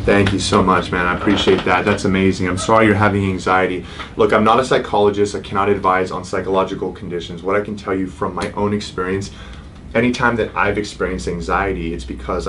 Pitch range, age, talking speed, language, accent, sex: 85-95 Hz, 30-49, 200 wpm, English, American, male